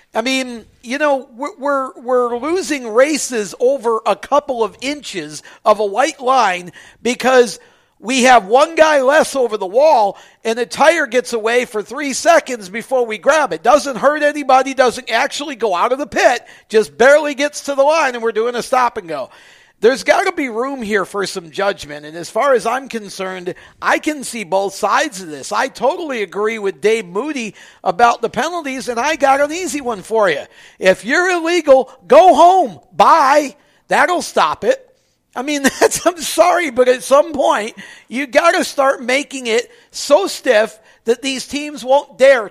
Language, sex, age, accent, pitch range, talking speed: English, male, 50-69, American, 215-290 Hz, 185 wpm